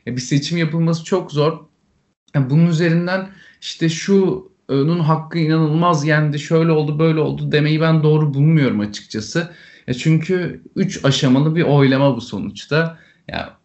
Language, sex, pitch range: Turkish, male, 125-165 Hz